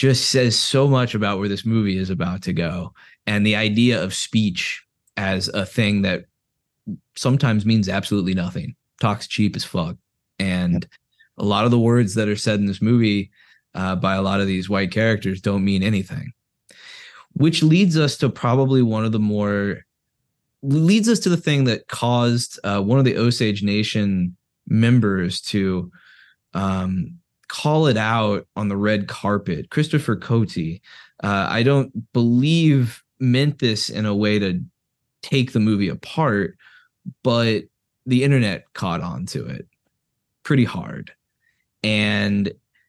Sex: male